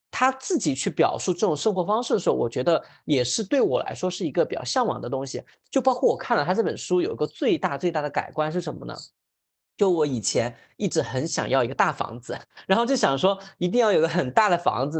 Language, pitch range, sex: Chinese, 145-200 Hz, male